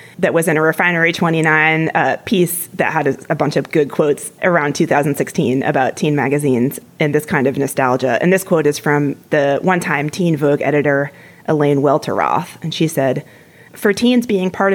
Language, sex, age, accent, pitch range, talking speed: English, female, 30-49, American, 145-200 Hz, 180 wpm